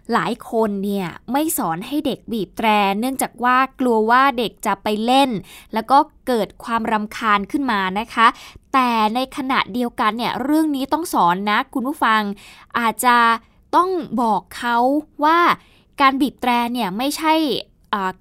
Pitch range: 220-280 Hz